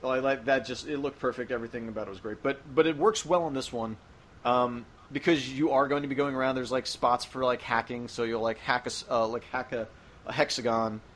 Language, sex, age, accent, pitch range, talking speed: English, male, 30-49, American, 115-140 Hz, 245 wpm